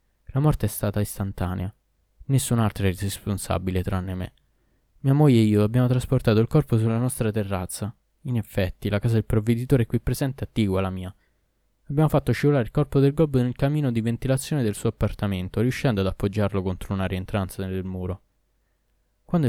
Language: Italian